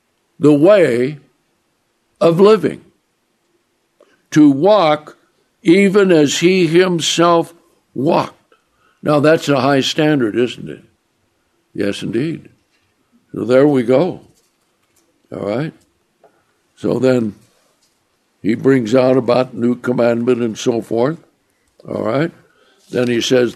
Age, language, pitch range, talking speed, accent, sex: 60-79, English, 115-150 Hz, 105 wpm, American, male